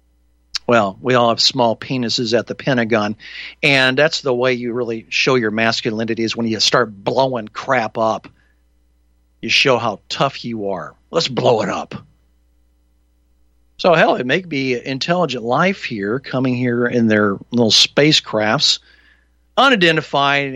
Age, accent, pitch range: 50-69, American, 100-135 Hz